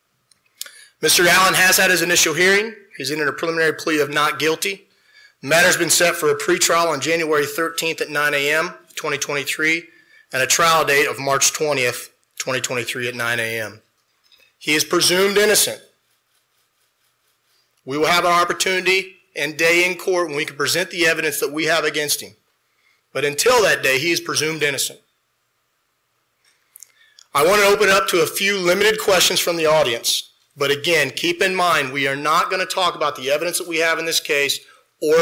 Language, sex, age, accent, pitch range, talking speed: English, male, 30-49, American, 145-185 Hz, 180 wpm